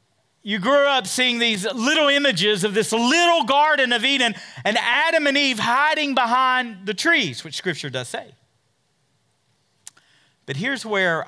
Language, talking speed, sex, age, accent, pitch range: English, 150 wpm, male, 40-59, American, 140-220 Hz